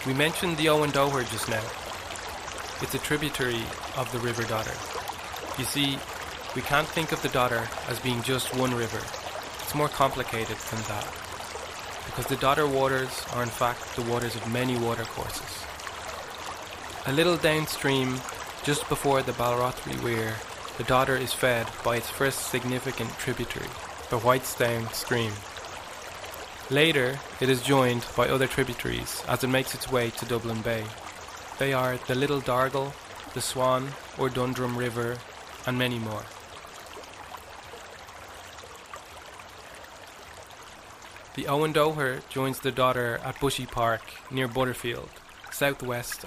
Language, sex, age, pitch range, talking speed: English, male, 20-39, 120-135 Hz, 135 wpm